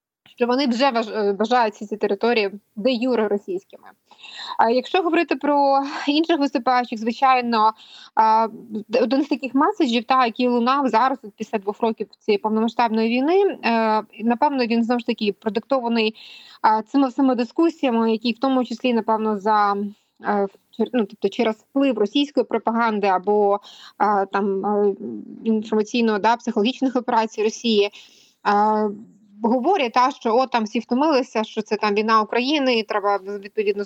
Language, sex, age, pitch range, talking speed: Ukrainian, female, 20-39, 215-255 Hz, 140 wpm